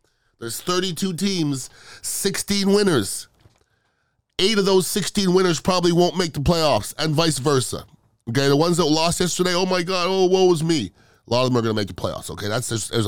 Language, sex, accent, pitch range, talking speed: English, male, American, 115-175 Hz, 205 wpm